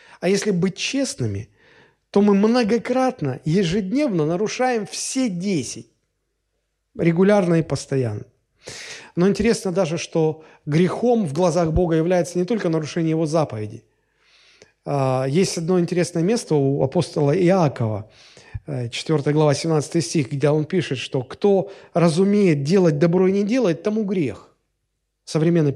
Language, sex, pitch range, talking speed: Russian, male, 145-205 Hz, 125 wpm